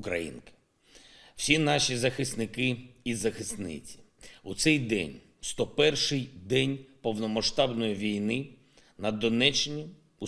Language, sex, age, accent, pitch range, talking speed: Ukrainian, male, 50-69, native, 115-150 Hz, 95 wpm